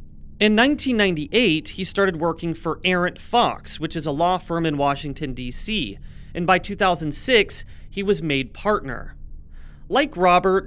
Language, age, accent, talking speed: English, 30-49, American, 140 wpm